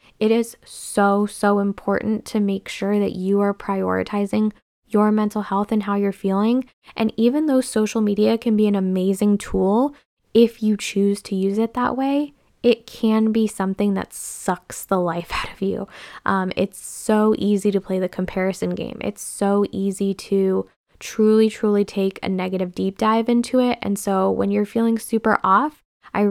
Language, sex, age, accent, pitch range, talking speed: English, female, 10-29, American, 195-225 Hz, 180 wpm